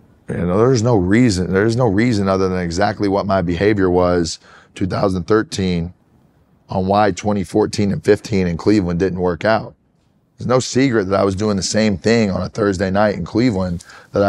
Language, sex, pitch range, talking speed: English, male, 95-120 Hz, 180 wpm